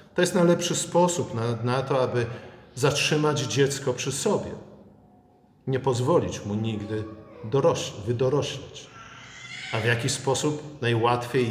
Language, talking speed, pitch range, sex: Polish, 120 wpm, 110-150 Hz, male